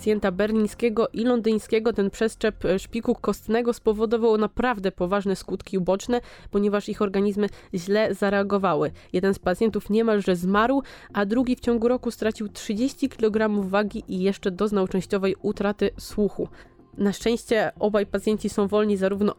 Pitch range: 190-230 Hz